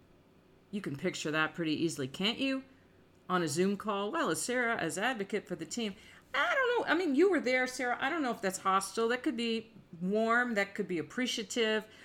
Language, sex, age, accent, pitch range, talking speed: English, female, 50-69, American, 180-240 Hz, 215 wpm